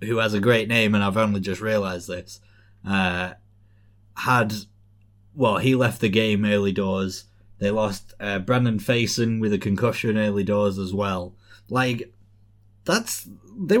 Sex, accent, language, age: male, British, English, 20-39